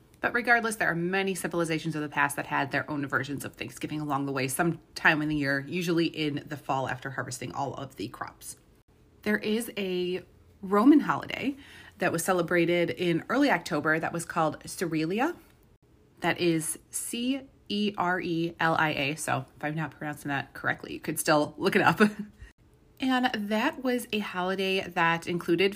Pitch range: 160-215 Hz